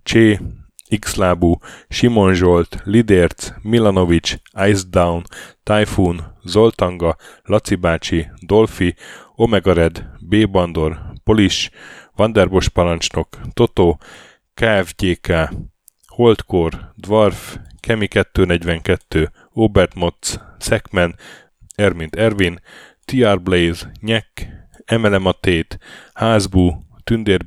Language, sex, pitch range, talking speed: Hungarian, male, 85-105 Hz, 70 wpm